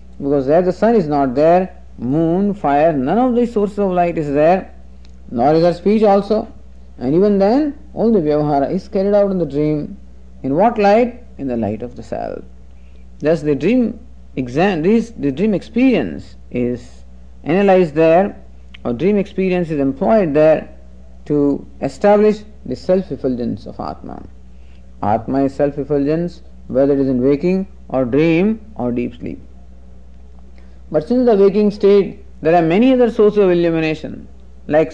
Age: 50-69